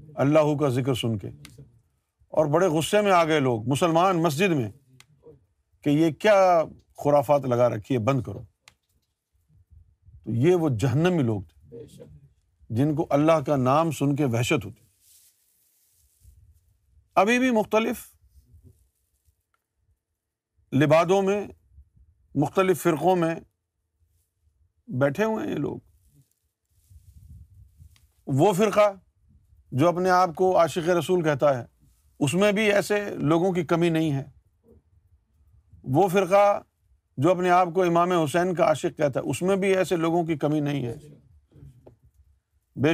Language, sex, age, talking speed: Urdu, male, 50-69, 130 wpm